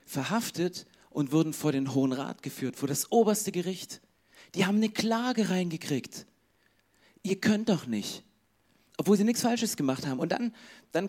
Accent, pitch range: German, 130-190 Hz